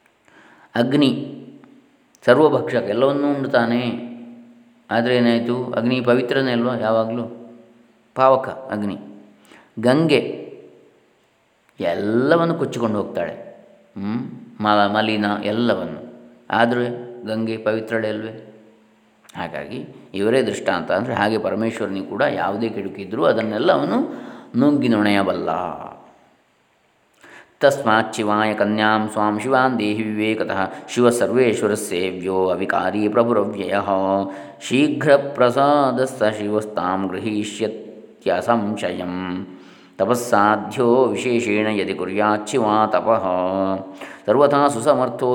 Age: 20-39